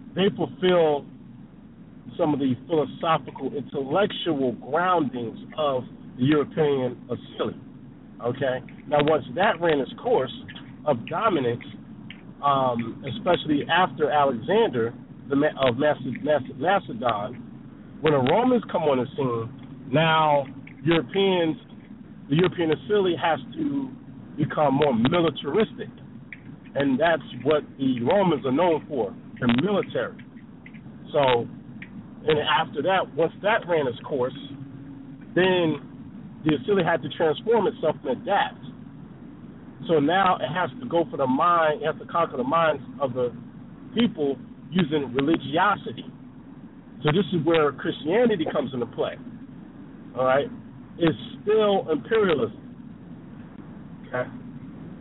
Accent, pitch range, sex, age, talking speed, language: American, 135-185 Hz, male, 50-69, 115 wpm, English